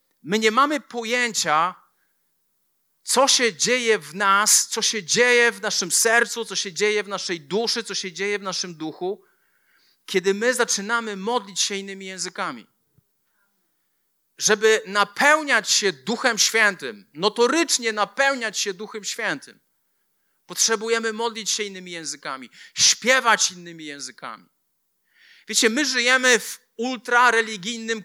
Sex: male